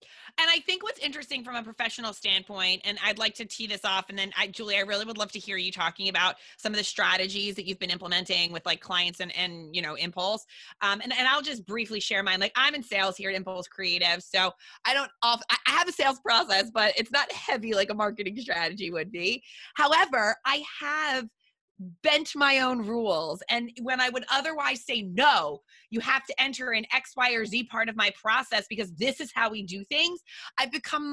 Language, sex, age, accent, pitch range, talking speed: English, female, 30-49, American, 210-285 Hz, 220 wpm